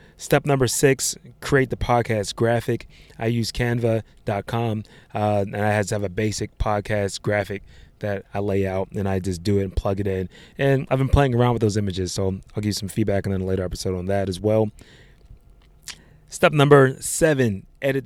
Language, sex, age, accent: English, male, 20-39, American